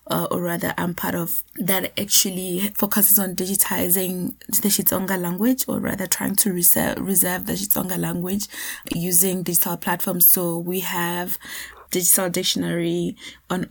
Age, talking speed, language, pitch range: 20-39, 135 wpm, English, 175-200 Hz